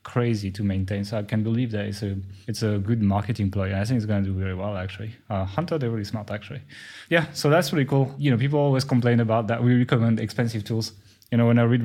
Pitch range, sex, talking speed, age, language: 110-145 Hz, male, 260 wpm, 20-39, English